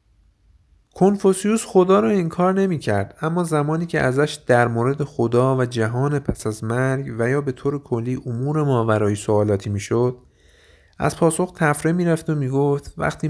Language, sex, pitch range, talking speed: Persian, male, 110-140 Hz, 160 wpm